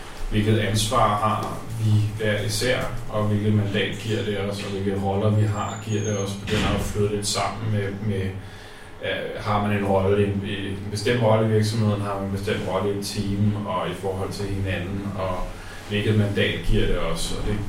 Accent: native